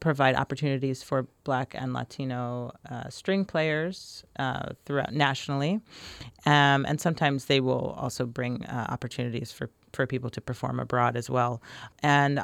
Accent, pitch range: American, 125-145 Hz